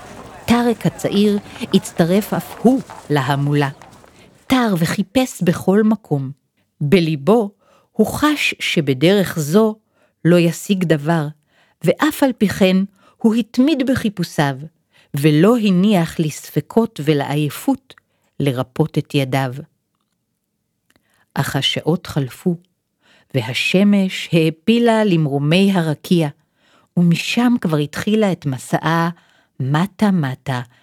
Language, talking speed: Hebrew, 90 wpm